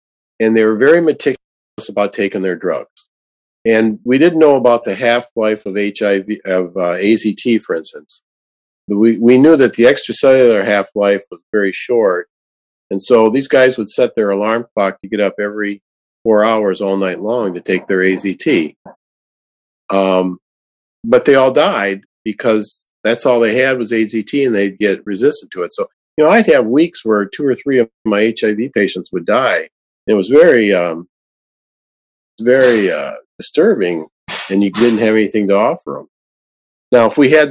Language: English